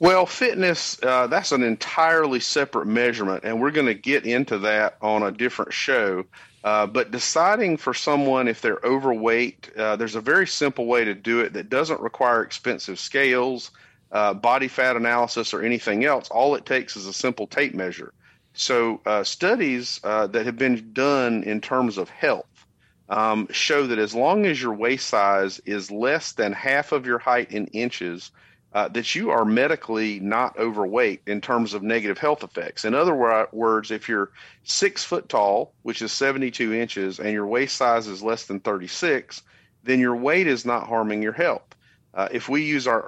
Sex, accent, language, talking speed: male, American, English, 185 wpm